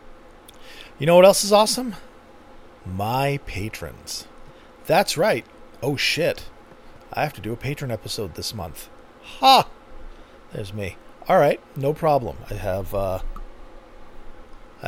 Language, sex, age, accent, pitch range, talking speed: English, male, 40-59, American, 115-170 Hz, 125 wpm